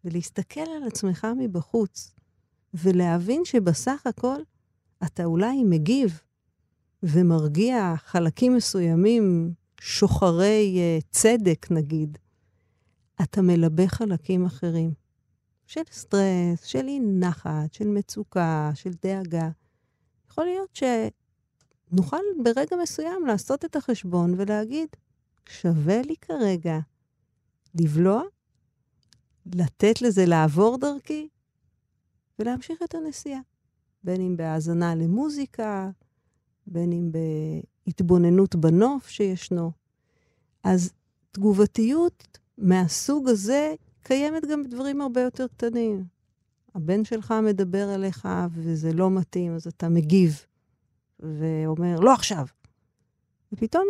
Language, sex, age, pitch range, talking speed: Hebrew, female, 50-69, 165-240 Hz, 90 wpm